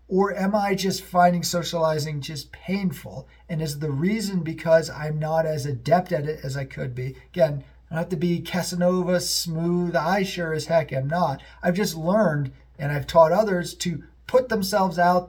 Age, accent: 40-59, American